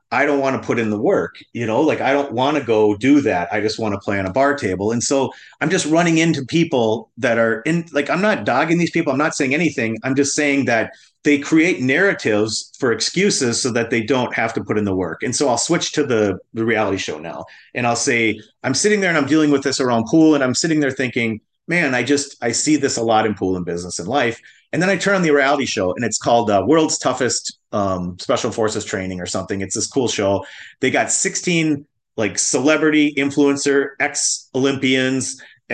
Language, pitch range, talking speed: English, 110-145 Hz, 235 wpm